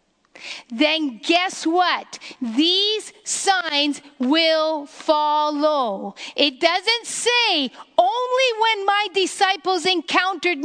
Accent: American